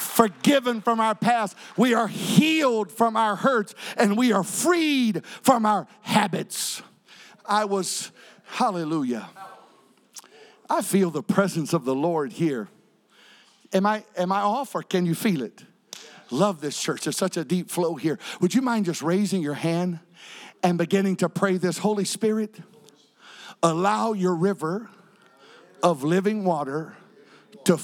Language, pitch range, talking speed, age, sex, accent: English, 170-215 Hz, 145 wpm, 50-69, male, American